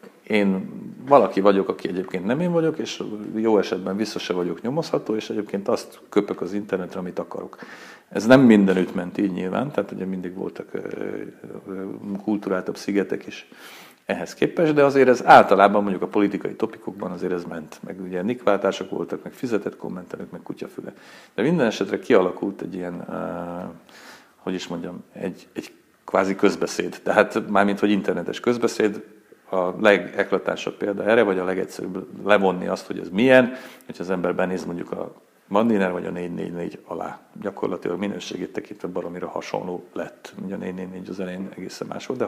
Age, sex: 50-69, male